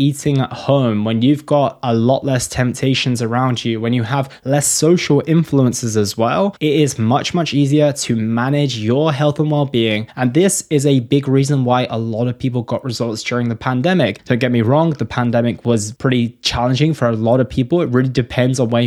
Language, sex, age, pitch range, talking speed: English, male, 20-39, 115-145 Hz, 210 wpm